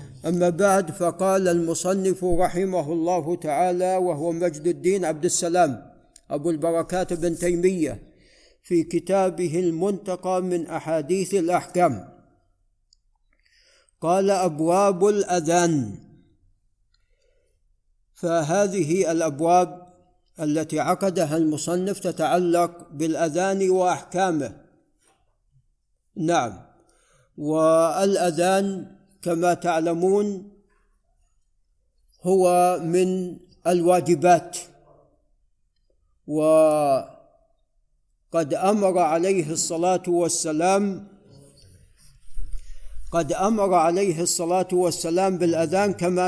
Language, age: Arabic, 50-69